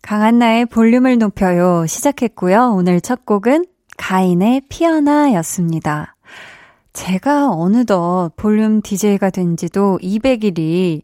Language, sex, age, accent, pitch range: Korean, female, 20-39, native, 185-265 Hz